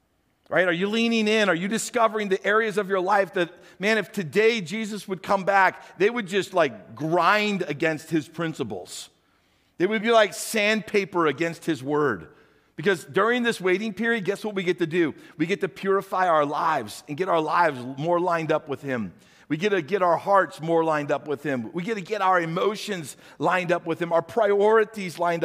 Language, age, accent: English, 50-69, American